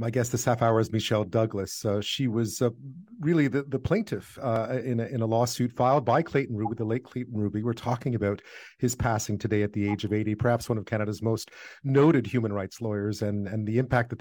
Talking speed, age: 230 wpm, 40-59